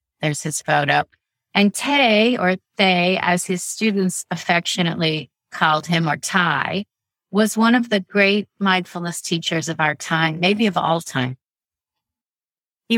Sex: female